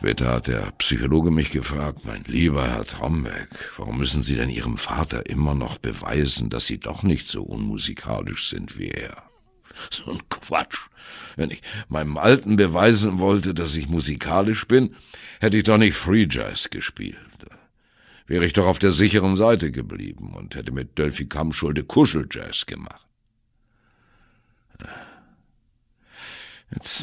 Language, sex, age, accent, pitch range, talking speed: German, male, 60-79, German, 70-105 Hz, 145 wpm